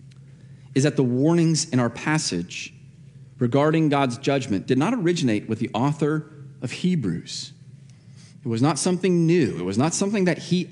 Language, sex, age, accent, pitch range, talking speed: English, male, 30-49, American, 130-155 Hz, 160 wpm